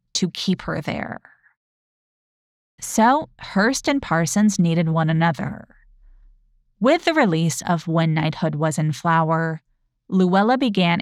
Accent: American